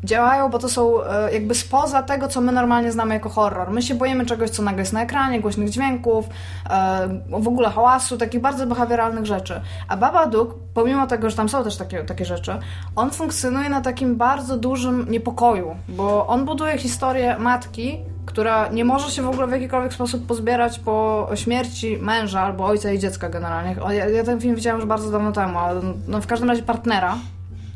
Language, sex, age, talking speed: Polish, female, 20-39, 190 wpm